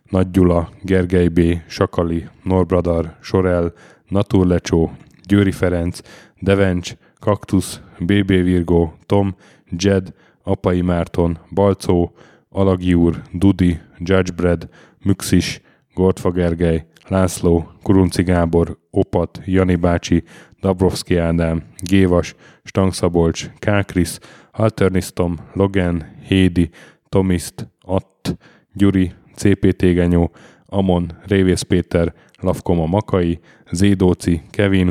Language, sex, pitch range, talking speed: Hungarian, male, 85-95 Hz, 90 wpm